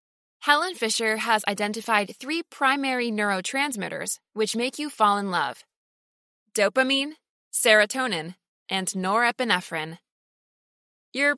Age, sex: 20-39, female